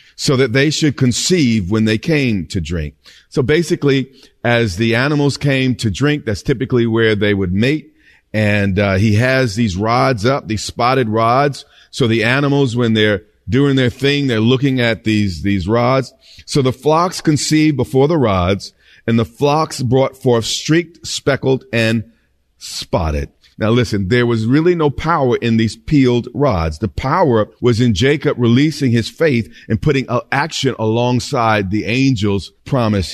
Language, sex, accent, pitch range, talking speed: English, male, American, 110-140 Hz, 165 wpm